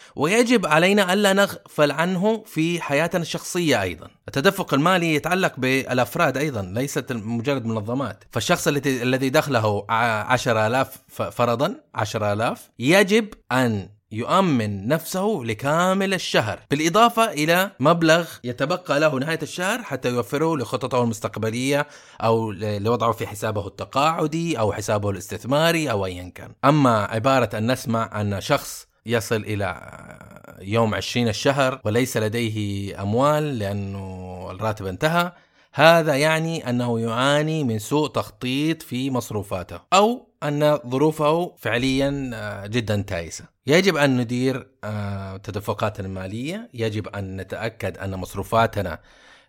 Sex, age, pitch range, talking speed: male, 30-49, 105-155 Hz, 115 wpm